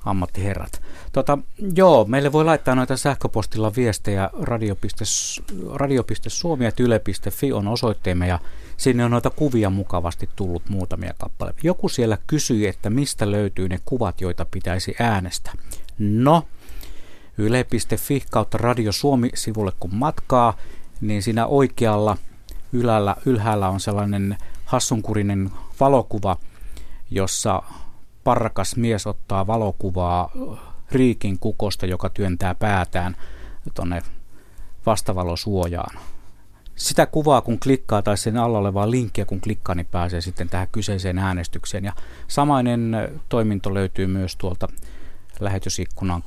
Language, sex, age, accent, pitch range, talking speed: Finnish, male, 60-79, native, 90-115 Hz, 110 wpm